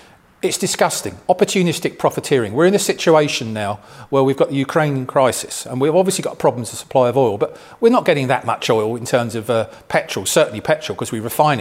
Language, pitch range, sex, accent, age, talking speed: English, 120-160 Hz, male, British, 40-59, 215 wpm